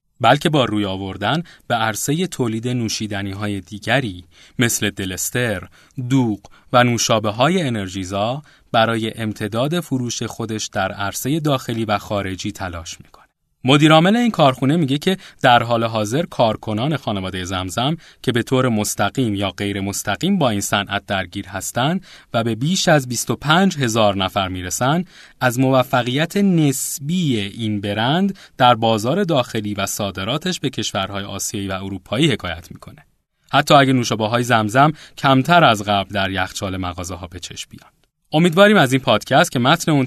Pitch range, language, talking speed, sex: 100-145 Hz, Persian, 145 wpm, male